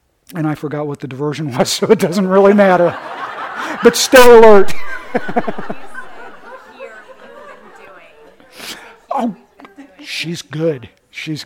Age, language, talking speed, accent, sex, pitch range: 50-69, English, 95 wpm, American, male, 145-200 Hz